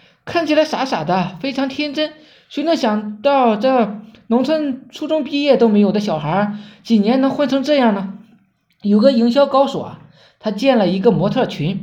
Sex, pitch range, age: male, 200-265 Hz, 20-39